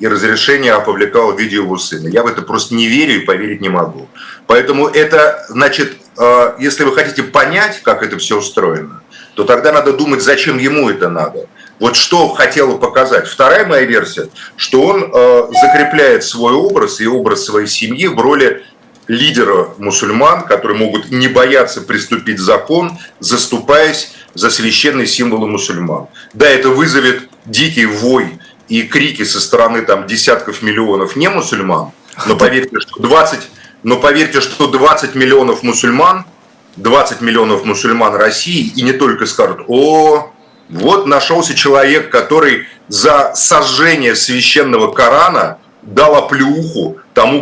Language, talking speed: Russian, 140 wpm